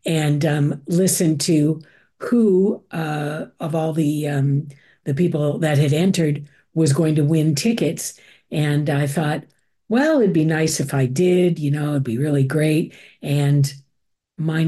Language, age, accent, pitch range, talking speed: English, 50-69, American, 150-170 Hz, 155 wpm